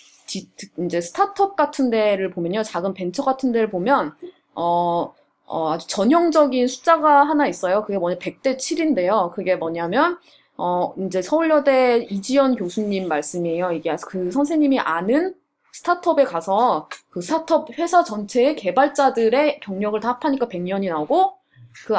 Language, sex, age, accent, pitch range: Korean, female, 20-39, native, 185-285 Hz